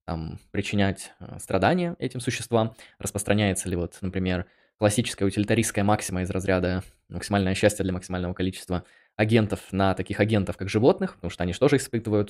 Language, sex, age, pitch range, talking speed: Russian, male, 20-39, 90-110 Hz, 145 wpm